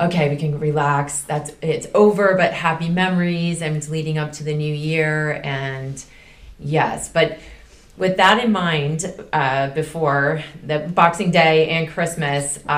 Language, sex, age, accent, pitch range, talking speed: English, female, 30-49, American, 140-175 Hz, 150 wpm